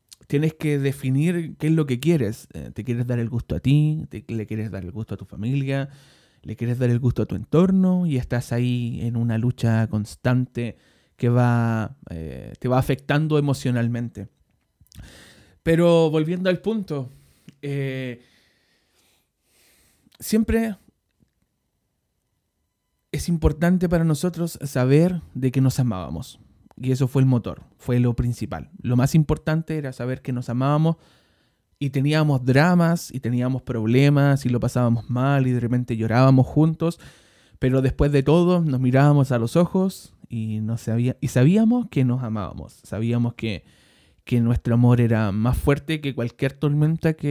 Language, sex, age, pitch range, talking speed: Spanish, male, 20-39, 120-150 Hz, 155 wpm